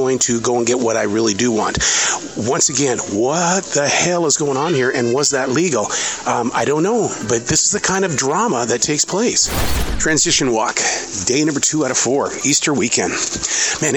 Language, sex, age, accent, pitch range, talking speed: English, male, 40-59, American, 115-150 Hz, 205 wpm